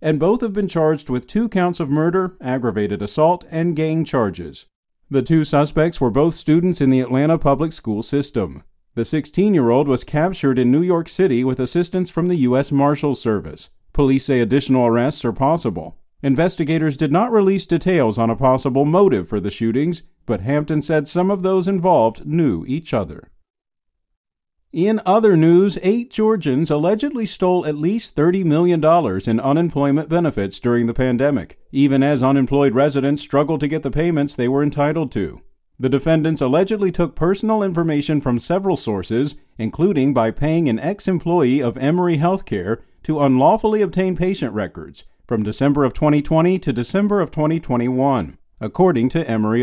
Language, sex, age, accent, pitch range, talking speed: English, male, 50-69, American, 130-175 Hz, 160 wpm